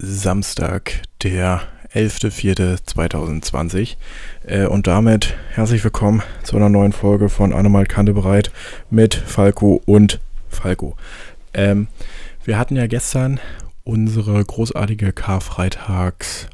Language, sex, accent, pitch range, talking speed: German, male, German, 90-105 Hz, 100 wpm